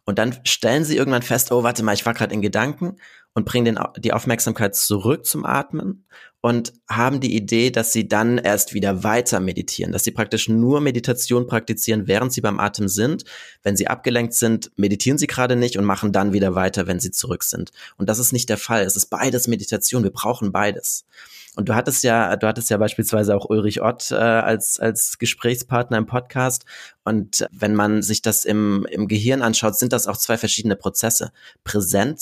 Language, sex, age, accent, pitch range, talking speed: German, male, 30-49, German, 105-120 Hz, 195 wpm